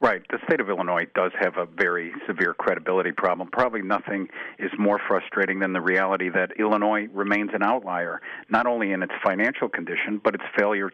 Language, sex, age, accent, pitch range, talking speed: English, male, 50-69, American, 95-110 Hz, 185 wpm